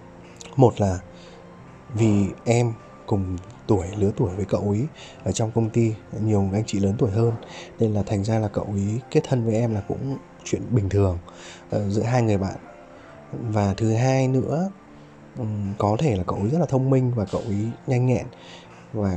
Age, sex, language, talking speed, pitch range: 20-39, male, Vietnamese, 190 wpm, 100-125 Hz